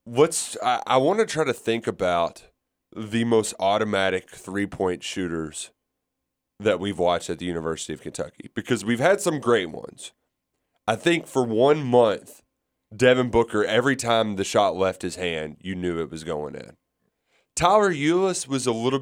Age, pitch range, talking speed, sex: 30-49, 90-125 Hz, 165 wpm, male